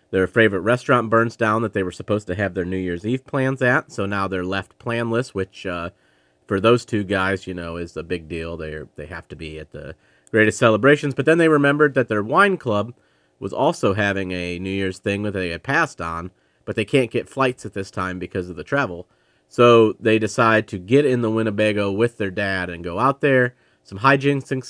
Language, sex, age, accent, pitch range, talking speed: English, male, 40-59, American, 90-125 Hz, 225 wpm